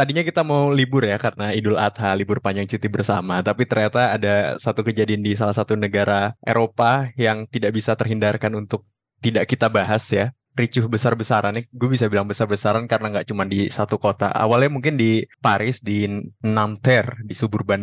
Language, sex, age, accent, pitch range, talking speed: Indonesian, male, 20-39, native, 100-115 Hz, 175 wpm